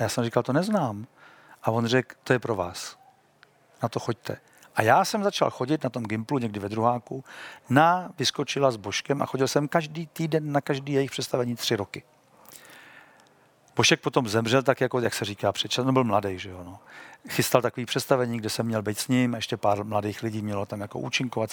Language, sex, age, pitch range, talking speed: Czech, male, 50-69, 115-160 Hz, 205 wpm